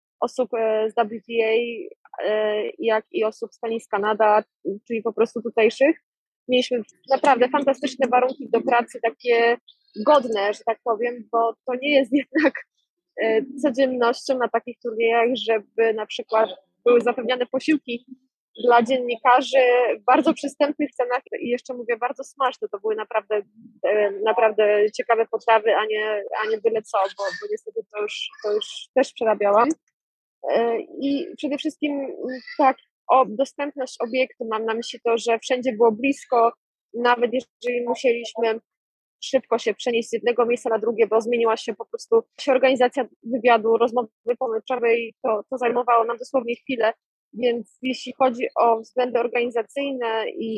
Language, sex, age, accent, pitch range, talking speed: Polish, female, 20-39, native, 225-260 Hz, 140 wpm